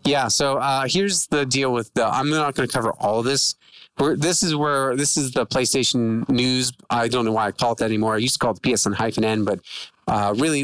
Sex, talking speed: male, 245 wpm